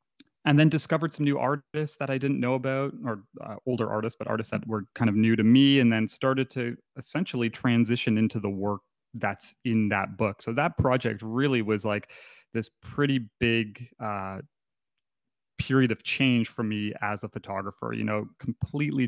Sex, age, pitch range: male, 30-49, 110-125 Hz